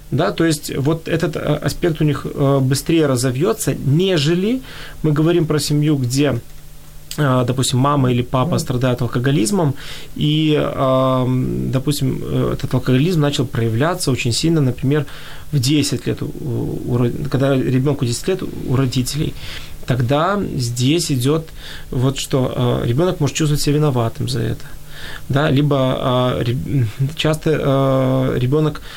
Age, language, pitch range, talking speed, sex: 20-39, Ukrainian, 135-165 Hz, 120 wpm, male